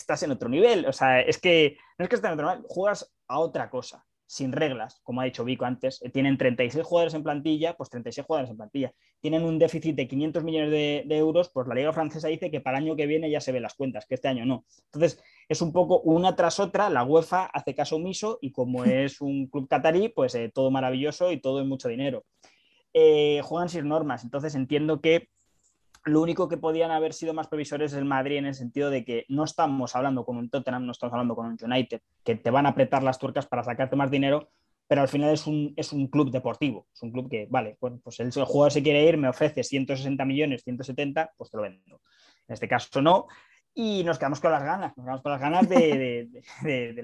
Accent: Spanish